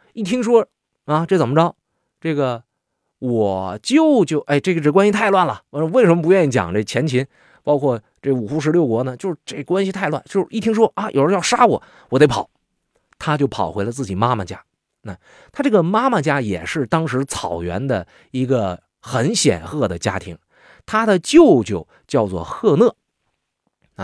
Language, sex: Chinese, male